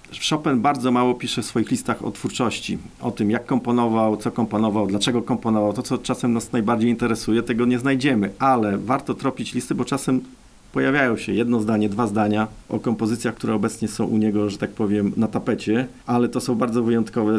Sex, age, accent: male, 40-59, native